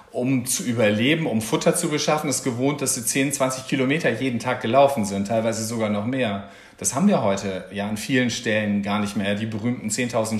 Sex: male